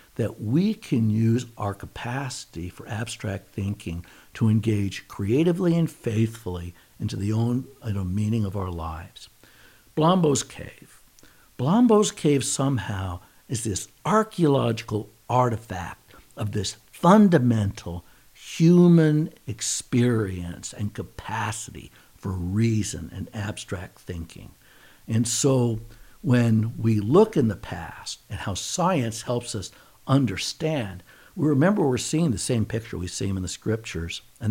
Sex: male